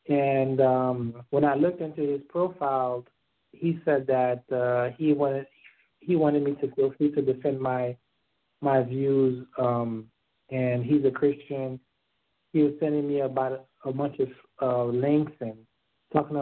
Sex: male